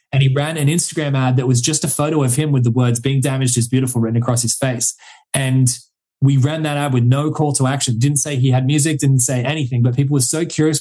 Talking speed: 260 wpm